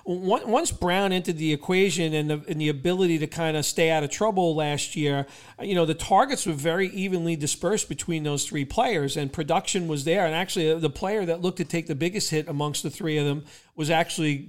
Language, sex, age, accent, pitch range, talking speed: English, male, 40-59, American, 155-180 Hz, 220 wpm